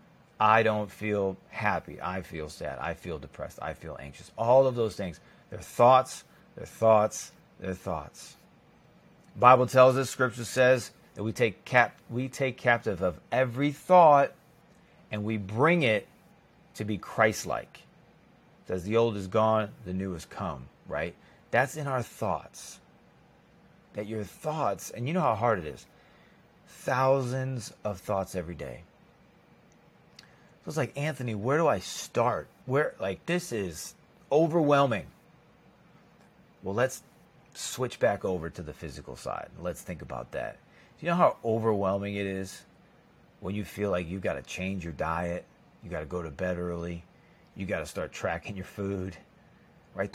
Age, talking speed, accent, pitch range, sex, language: 30-49, 160 wpm, American, 90-120 Hz, male, English